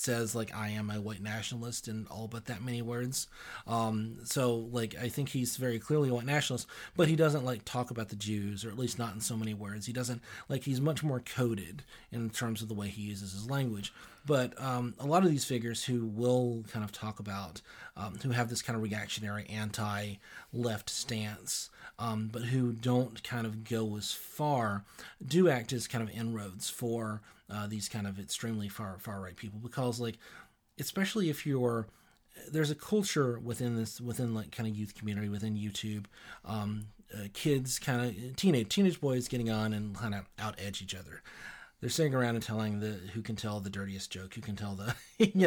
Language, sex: English, male